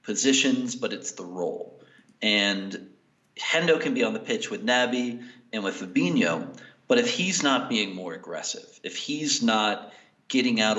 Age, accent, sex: 40-59, American, male